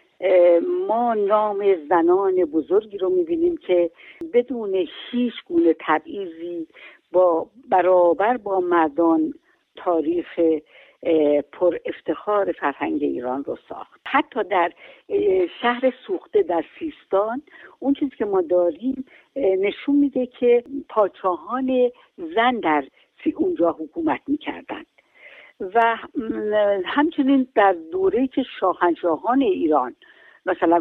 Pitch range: 175-285 Hz